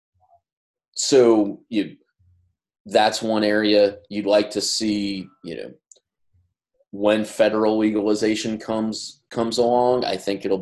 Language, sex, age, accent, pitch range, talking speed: English, male, 30-49, American, 95-110 Hz, 115 wpm